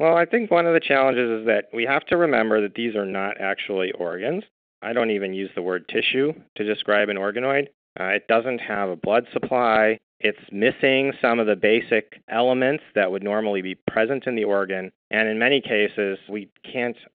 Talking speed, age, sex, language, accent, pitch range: 205 wpm, 40-59, male, English, American, 100-120 Hz